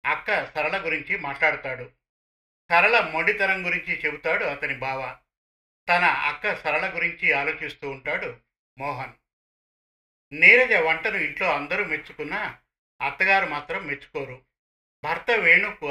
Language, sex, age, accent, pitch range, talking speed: Telugu, male, 50-69, native, 140-195 Hz, 100 wpm